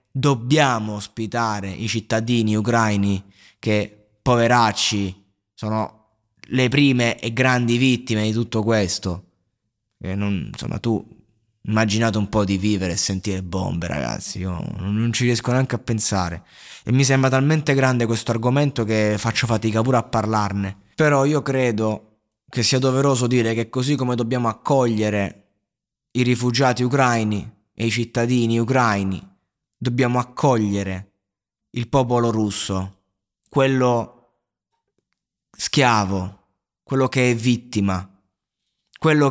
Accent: native